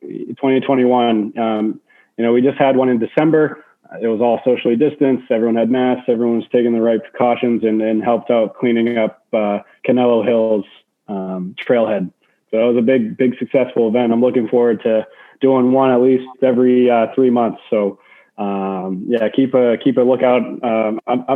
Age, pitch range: 20-39, 110-130 Hz